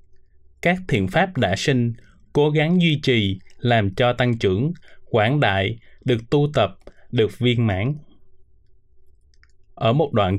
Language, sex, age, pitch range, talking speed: Vietnamese, male, 20-39, 100-145 Hz, 140 wpm